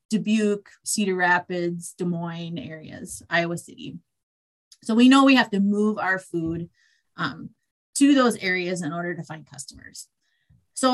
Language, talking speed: English, 150 wpm